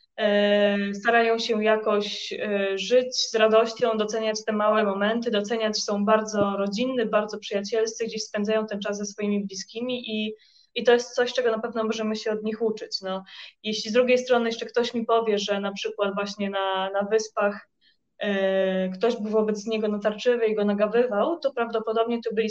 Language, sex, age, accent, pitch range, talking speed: Polish, female, 20-39, native, 205-240 Hz, 175 wpm